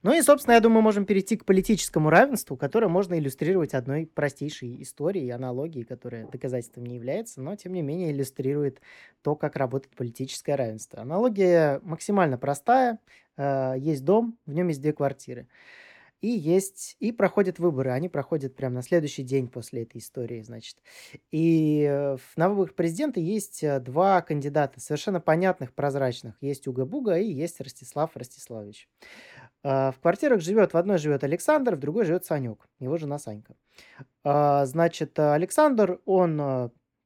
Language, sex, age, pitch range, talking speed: Russian, male, 20-39, 130-175 Hz, 145 wpm